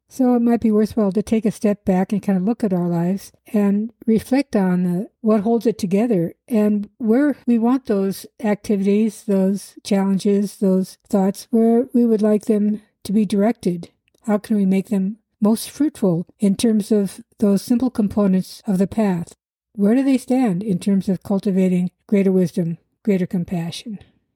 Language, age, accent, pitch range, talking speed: English, 60-79, American, 190-225 Hz, 170 wpm